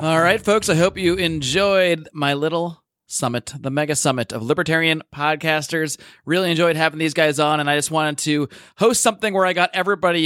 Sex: male